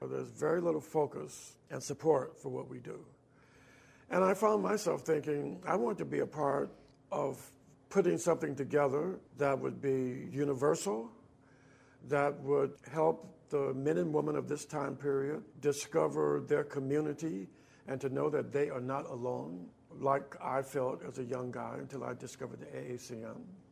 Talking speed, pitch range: 160 wpm, 135-165 Hz